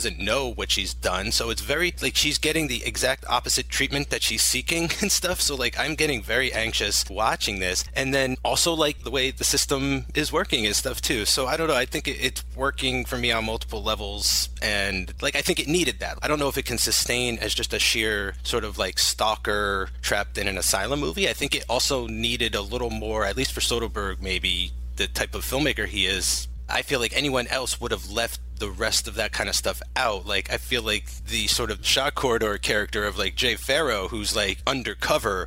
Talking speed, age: 225 wpm, 30-49